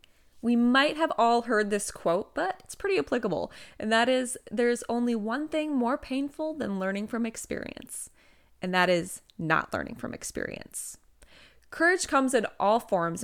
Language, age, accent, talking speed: English, 20-39, American, 165 wpm